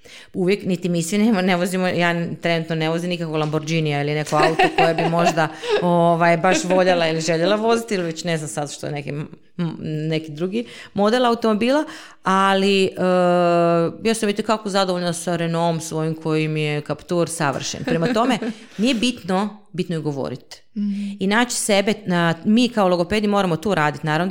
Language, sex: Croatian, female